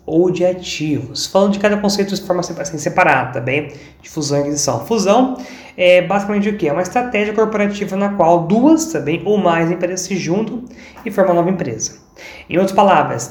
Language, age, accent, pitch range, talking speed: Portuguese, 20-39, Brazilian, 145-195 Hz, 200 wpm